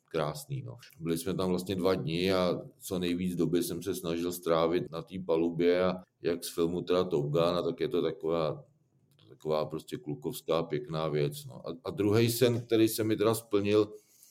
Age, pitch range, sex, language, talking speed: 40-59, 90-100 Hz, male, Czech, 180 wpm